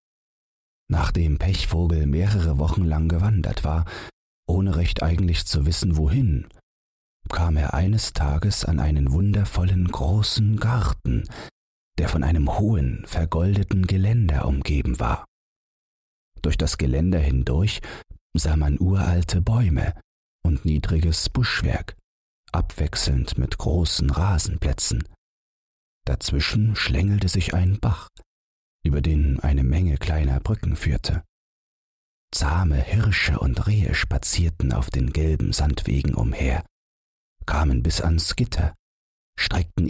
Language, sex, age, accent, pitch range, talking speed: German, male, 40-59, German, 75-95 Hz, 110 wpm